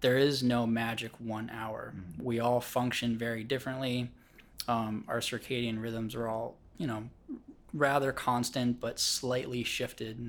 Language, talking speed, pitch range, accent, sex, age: English, 145 wpm, 110-125 Hz, American, male, 20-39